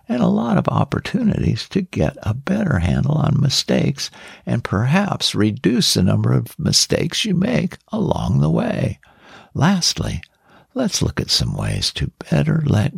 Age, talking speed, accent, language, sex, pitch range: 60-79, 155 wpm, American, English, male, 125-180 Hz